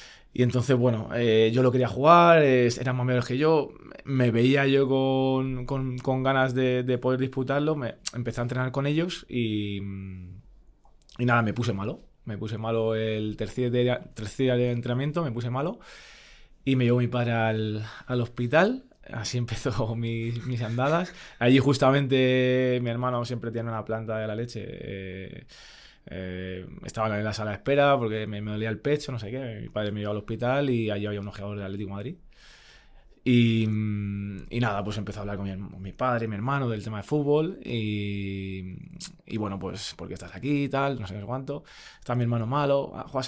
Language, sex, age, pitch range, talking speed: Spanish, male, 20-39, 110-130 Hz, 195 wpm